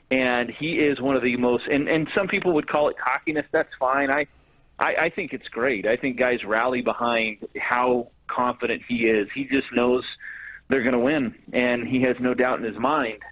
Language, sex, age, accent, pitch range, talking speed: English, male, 40-59, American, 115-140 Hz, 210 wpm